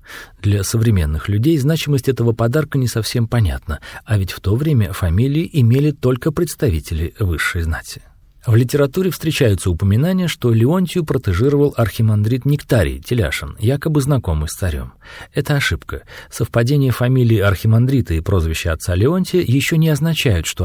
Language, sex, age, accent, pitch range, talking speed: Russian, male, 40-59, native, 100-150 Hz, 135 wpm